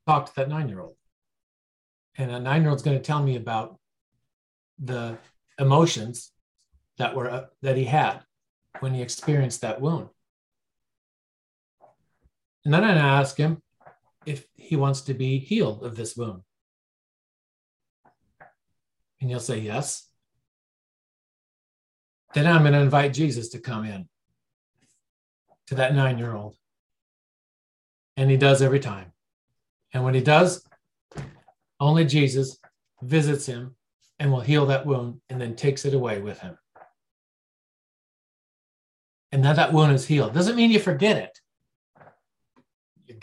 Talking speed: 130 wpm